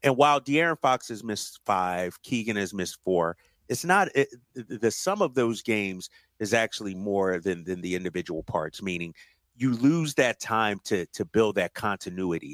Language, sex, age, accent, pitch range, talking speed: English, male, 30-49, American, 110-160 Hz, 185 wpm